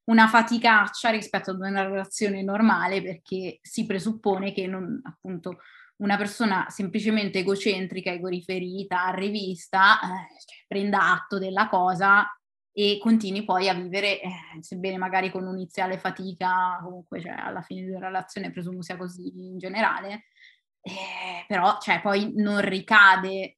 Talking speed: 140 wpm